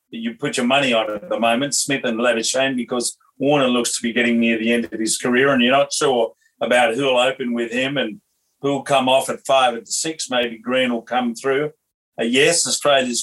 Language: English